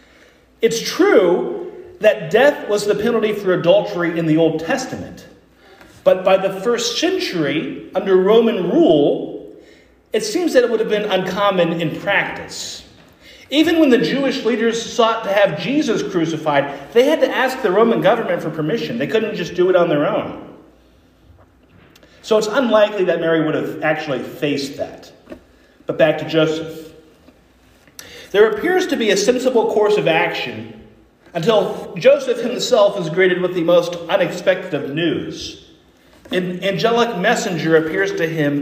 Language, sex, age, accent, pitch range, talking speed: English, male, 40-59, American, 170-265 Hz, 150 wpm